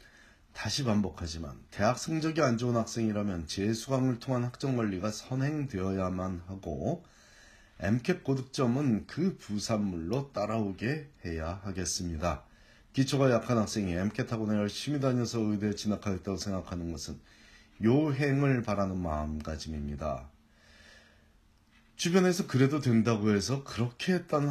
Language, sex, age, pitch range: Korean, male, 40-59, 85-125 Hz